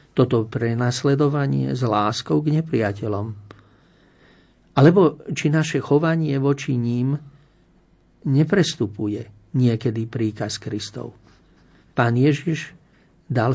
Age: 50-69